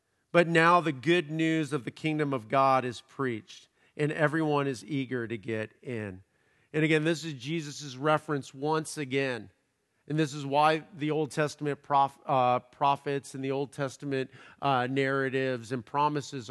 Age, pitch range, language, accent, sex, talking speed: 50-69, 135-170 Hz, English, American, male, 165 wpm